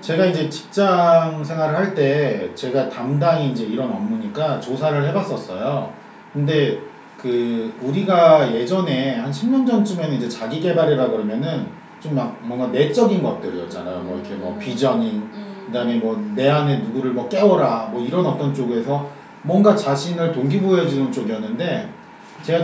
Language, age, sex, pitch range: Korean, 40-59, male, 140-210 Hz